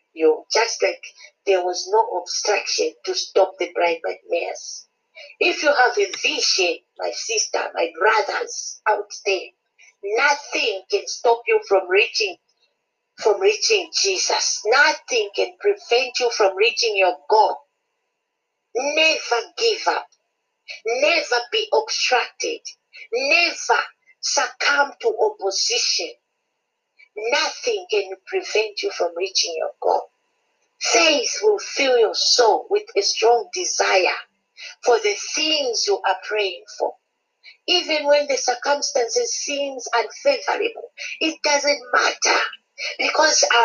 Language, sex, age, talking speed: English, female, 50-69, 115 wpm